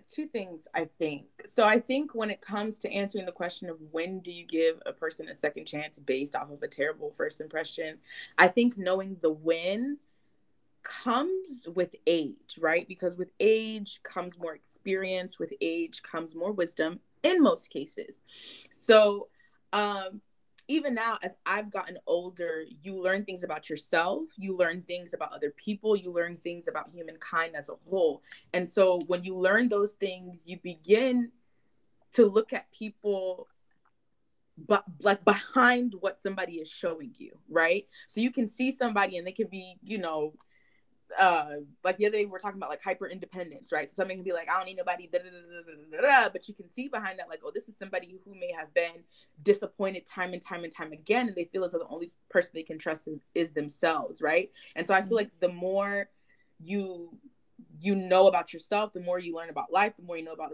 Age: 20-39